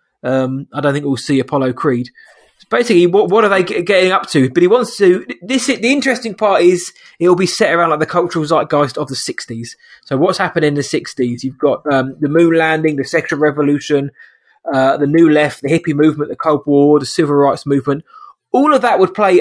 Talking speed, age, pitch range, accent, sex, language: 225 wpm, 20-39, 145-185 Hz, British, male, English